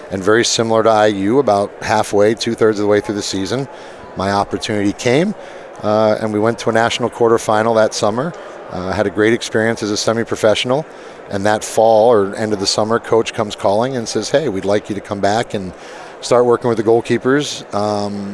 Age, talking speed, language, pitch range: 30-49, 205 wpm, English, 100-115 Hz